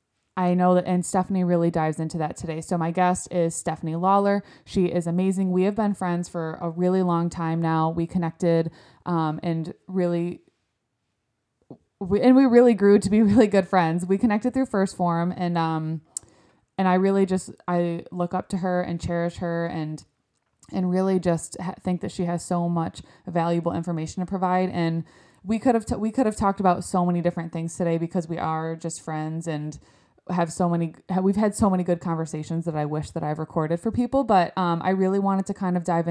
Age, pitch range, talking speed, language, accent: 20-39, 165-190 Hz, 205 wpm, English, American